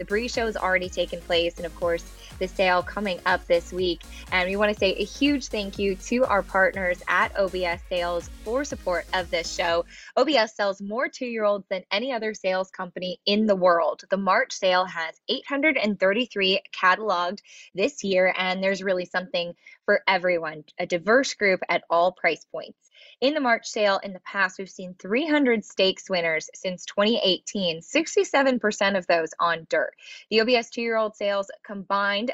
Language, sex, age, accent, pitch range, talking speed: English, female, 10-29, American, 180-230 Hz, 175 wpm